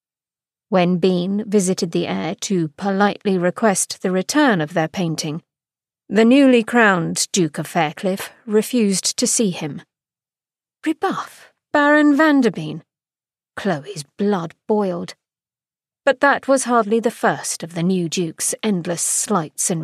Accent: British